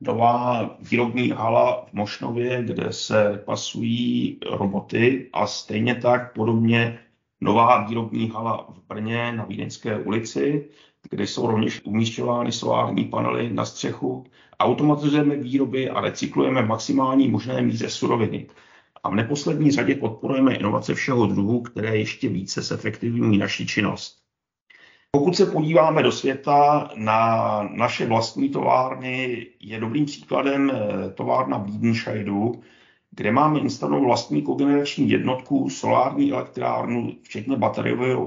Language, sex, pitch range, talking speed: Czech, male, 110-135 Hz, 120 wpm